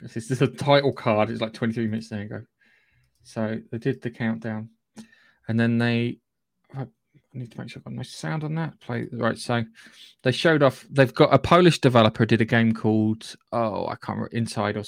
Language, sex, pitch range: English, male, 115-140 Hz